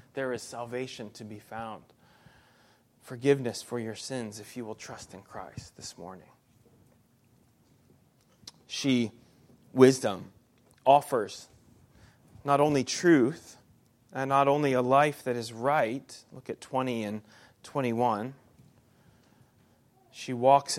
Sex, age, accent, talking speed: male, 30-49, American, 115 wpm